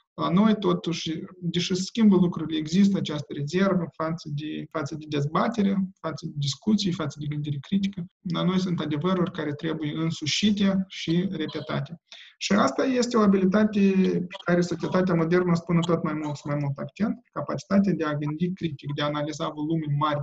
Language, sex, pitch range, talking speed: Romanian, male, 150-190 Hz, 170 wpm